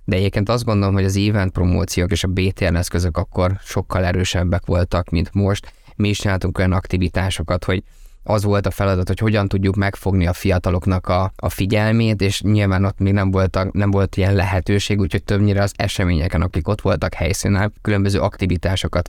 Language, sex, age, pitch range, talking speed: Hungarian, male, 20-39, 90-100 Hz, 175 wpm